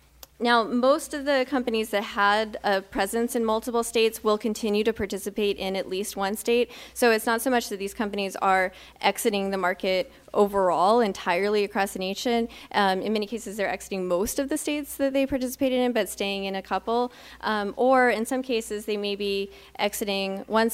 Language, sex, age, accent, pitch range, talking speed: English, female, 10-29, American, 190-225 Hz, 195 wpm